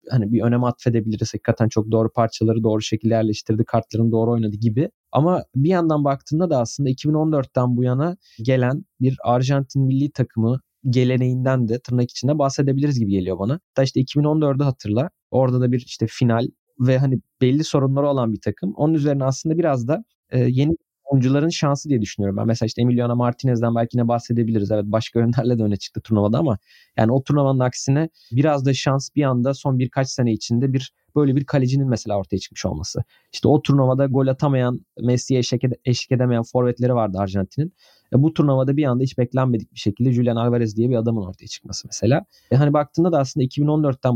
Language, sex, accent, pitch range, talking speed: Turkish, male, native, 115-140 Hz, 185 wpm